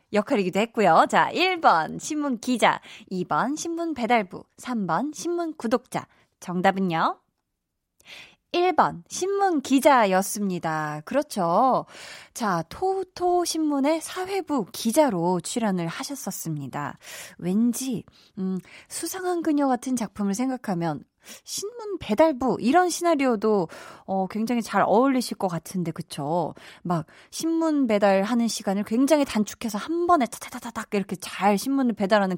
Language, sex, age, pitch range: Korean, female, 20-39, 185-275 Hz